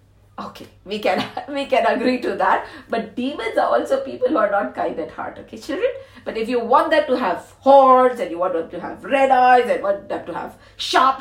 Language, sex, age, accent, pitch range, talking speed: English, female, 50-69, Indian, 205-300 Hz, 230 wpm